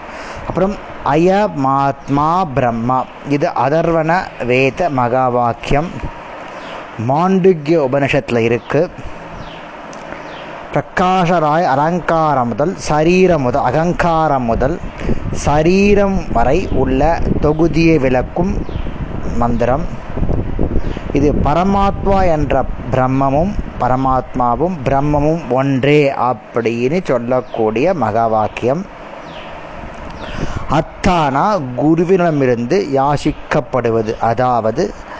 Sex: male